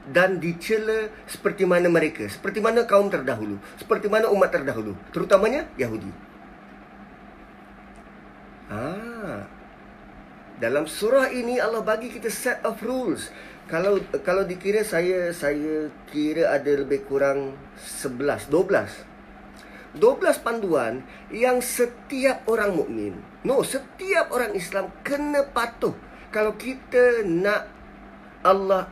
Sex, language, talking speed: male, Malay, 110 wpm